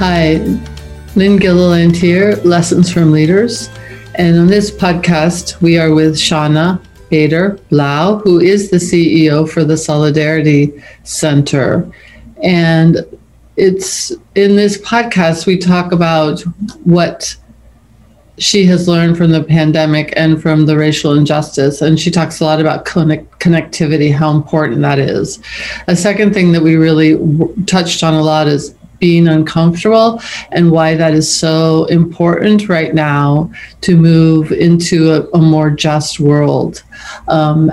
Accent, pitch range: American, 155-180 Hz